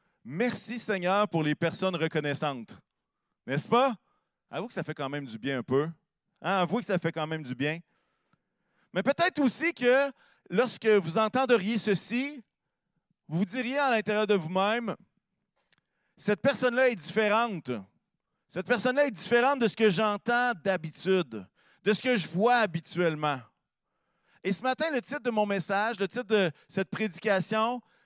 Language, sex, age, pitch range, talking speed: French, male, 40-59, 170-240 Hz, 165 wpm